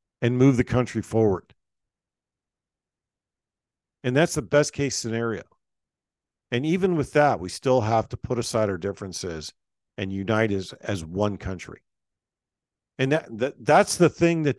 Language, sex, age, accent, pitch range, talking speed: English, male, 50-69, American, 125-180 Hz, 150 wpm